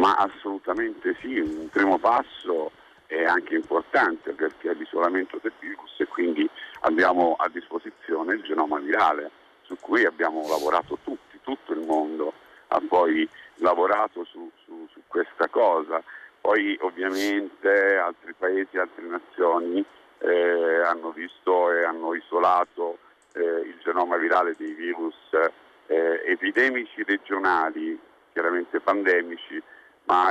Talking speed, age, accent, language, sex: 120 wpm, 50-69, native, Italian, male